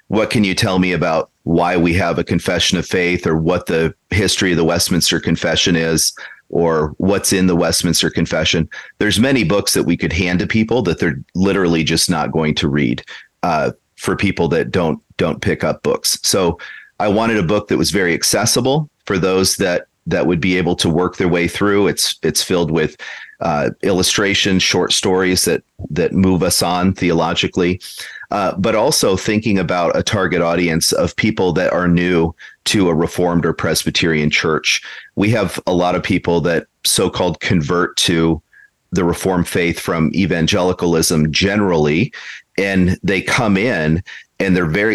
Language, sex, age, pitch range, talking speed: English, male, 40-59, 85-95 Hz, 175 wpm